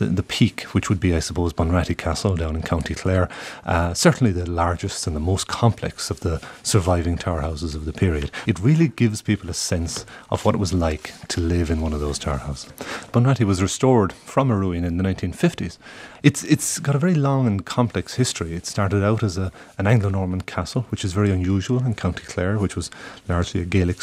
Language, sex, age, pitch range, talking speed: English, male, 30-49, 85-110 Hz, 215 wpm